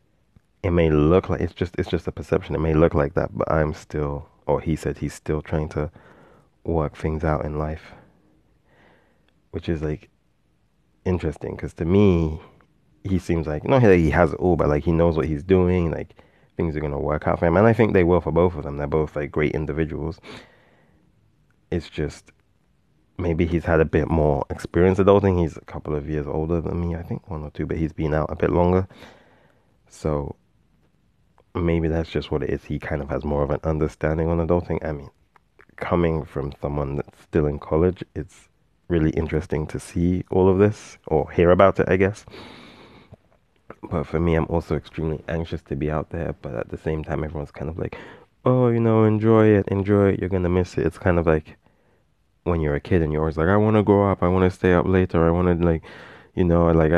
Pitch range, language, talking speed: 75-90 Hz, English, 220 wpm